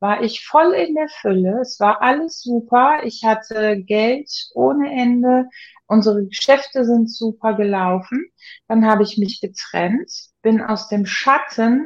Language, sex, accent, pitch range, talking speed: German, female, German, 205-255 Hz, 145 wpm